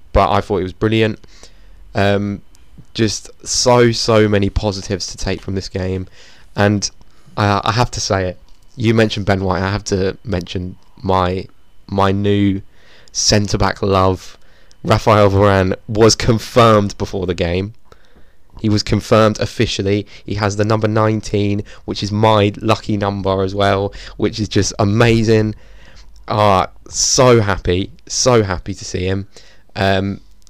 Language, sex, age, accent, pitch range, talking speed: English, male, 20-39, British, 95-110 Hz, 145 wpm